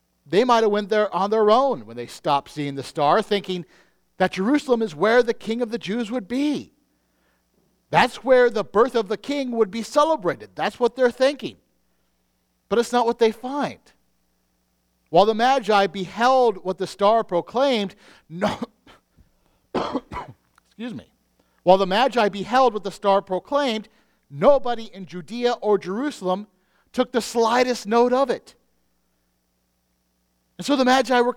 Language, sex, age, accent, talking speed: English, male, 50-69, American, 155 wpm